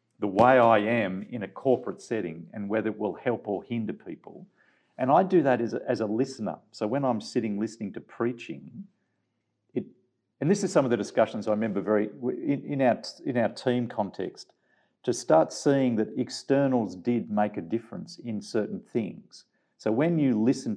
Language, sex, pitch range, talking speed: English, male, 105-140 Hz, 190 wpm